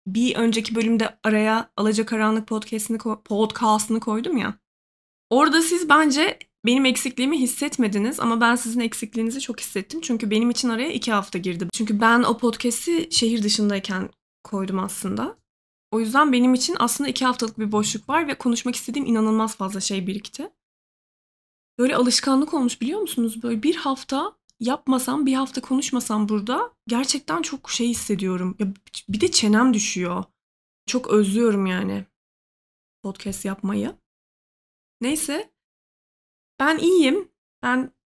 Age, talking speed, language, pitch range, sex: 20-39, 135 wpm, Turkish, 210-255 Hz, female